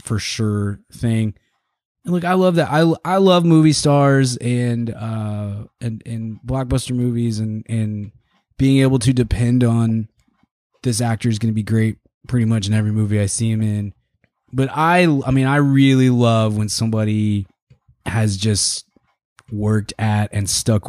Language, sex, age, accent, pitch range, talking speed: English, male, 20-39, American, 105-130 Hz, 165 wpm